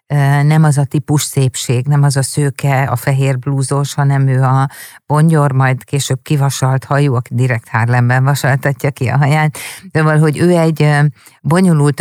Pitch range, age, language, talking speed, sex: 135-160 Hz, 50-69, Hungarian, 160 wpm, female